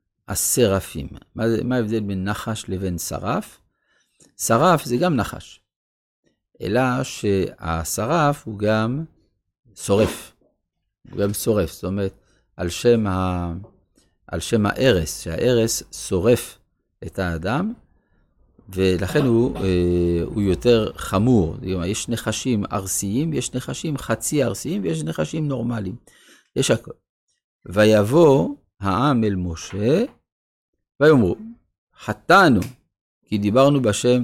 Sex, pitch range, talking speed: male, 95-130 Hz, 100 wpm